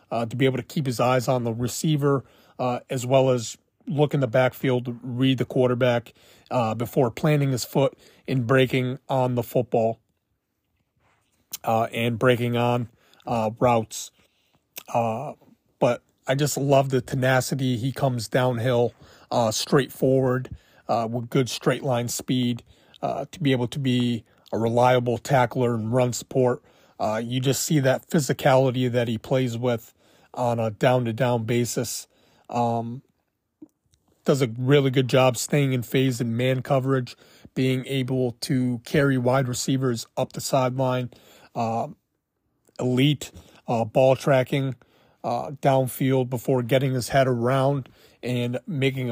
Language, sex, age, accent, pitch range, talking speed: English, male, 30-49, American, 120-135 Hz, 140 wpm